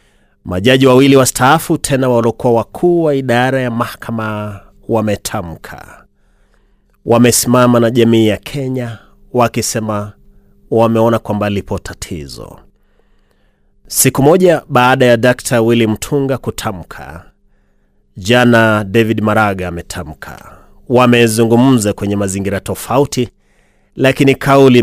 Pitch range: 100-125 Hz